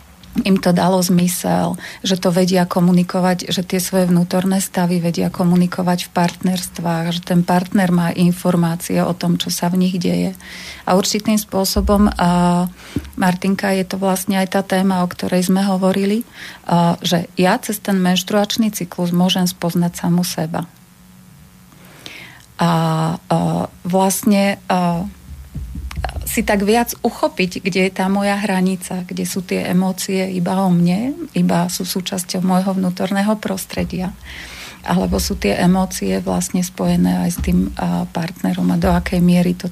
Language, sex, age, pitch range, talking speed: Slovak, female, 40-59, 175-195 Hz, 140 wpm